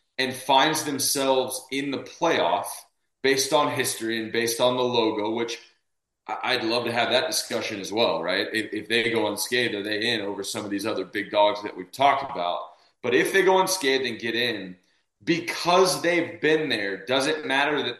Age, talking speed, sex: 20-39, 195 wpm, male